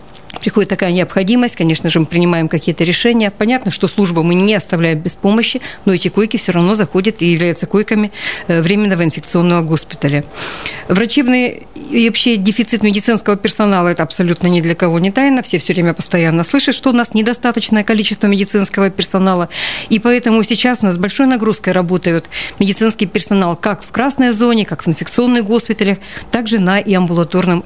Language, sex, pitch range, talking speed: Russian, female, 180-220 Hz, 165 wpm